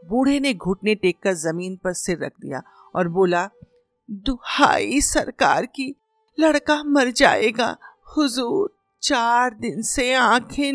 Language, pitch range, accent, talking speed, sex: Hindi, 200-295 Hz, native, 125 wpm, female